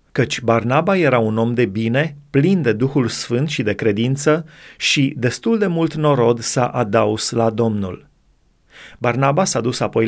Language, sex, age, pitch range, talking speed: Romanian, male, 30-49, 115-150 Hz, 160 wpm